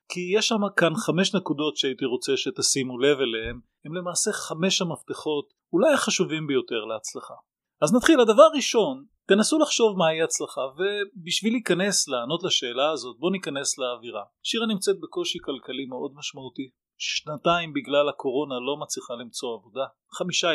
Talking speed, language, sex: 145 wpm, Hebrew, male